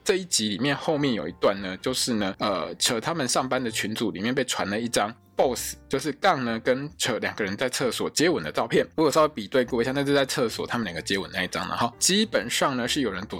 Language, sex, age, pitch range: Chinese, male, 20-39, 110-170 Hz